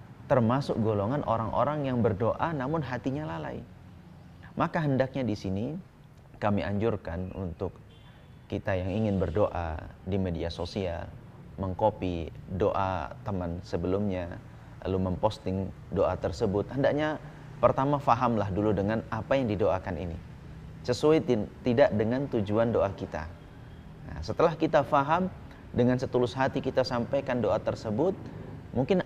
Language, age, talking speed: Indonesian, 30-49, 120 wpm